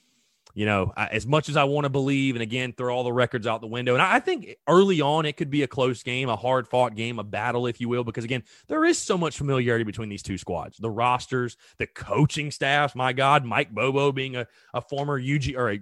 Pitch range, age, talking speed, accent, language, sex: 115-145 Hz, 30-49, 245 wpm, American, English, male